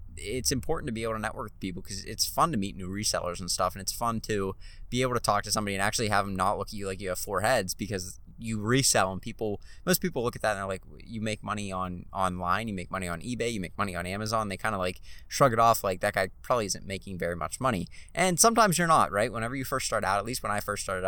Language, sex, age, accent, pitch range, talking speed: English, male, 20-39, American, 95-115 Hz, 290 wpm